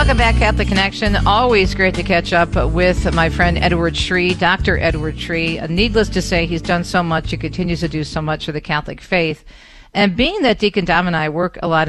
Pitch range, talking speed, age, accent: 155-180 Hz, 220 wpm, 50-69, American